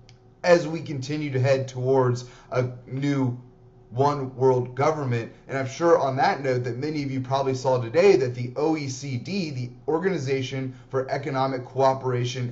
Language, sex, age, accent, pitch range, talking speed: English, male, 30-49, American, 125-145 Hz, 155 wpm